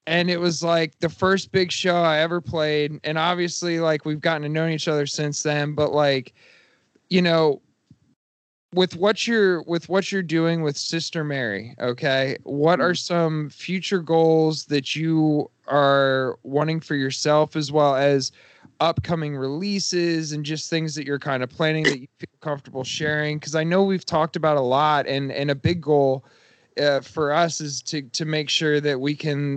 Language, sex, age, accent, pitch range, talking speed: English, male, 20-39, American, 135-160 Hz, 185 wpm